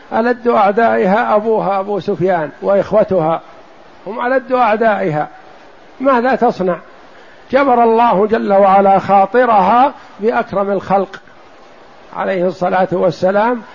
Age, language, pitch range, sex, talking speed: 60-79, Arabic, 195-225 Hz, male, 90 wpm